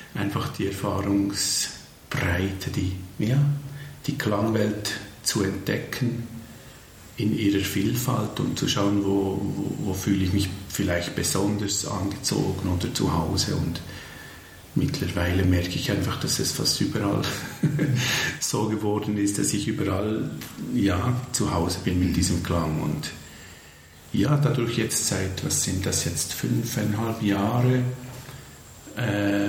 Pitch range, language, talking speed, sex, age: 90-115 Hz, German, 120 wpm, male, 50-69